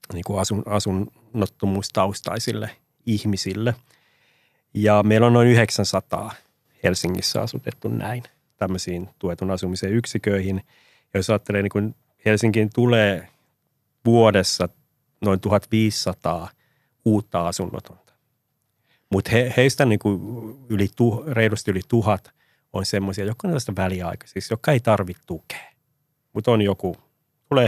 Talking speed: 100 wpm